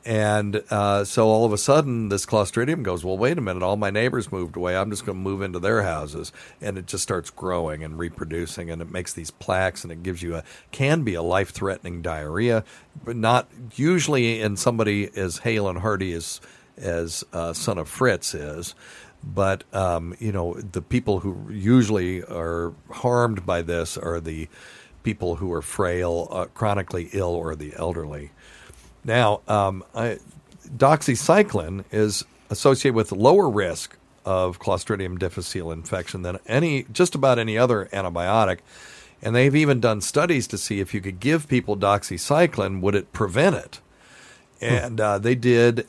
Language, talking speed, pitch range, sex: English, 175 wpm, 90-115 Hz, male